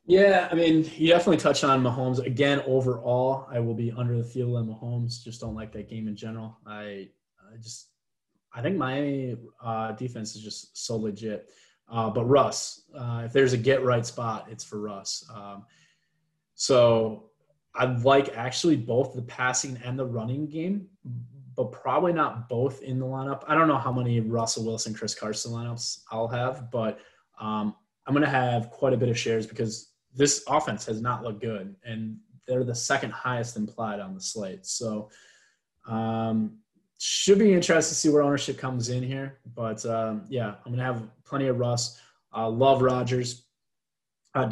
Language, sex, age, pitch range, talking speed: English, male, 20-39, 115-130 Hz, 180 wpm